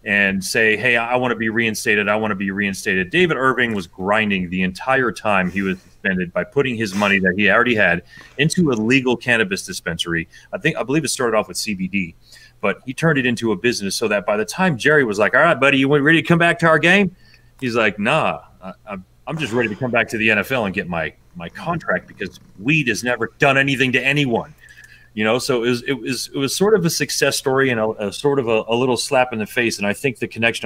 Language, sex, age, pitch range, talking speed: English, male, 30-49, 100-130 Hz, 250 wpm